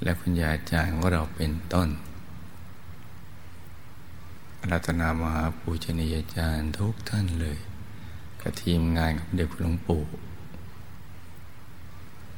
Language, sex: Thai, male